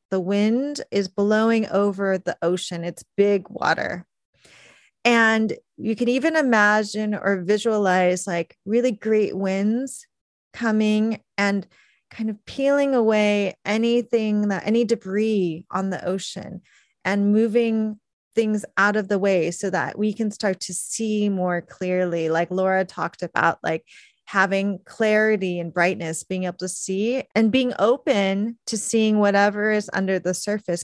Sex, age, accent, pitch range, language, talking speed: female, 30-49, American, 195-230 Hz, English, 140 wpm